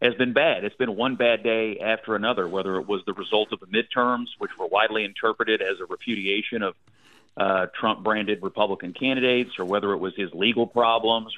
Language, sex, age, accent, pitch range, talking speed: English, male, 40-59, American, 110-145 Hz, 195 wpm